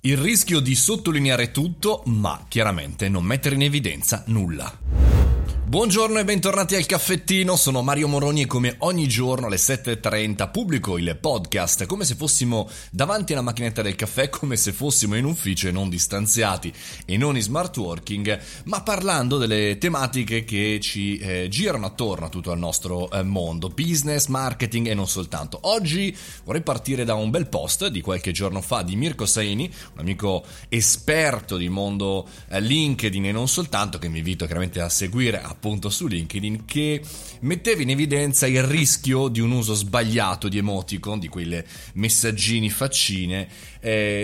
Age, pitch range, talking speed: 30-49, 100-140 Hz, 165 wpm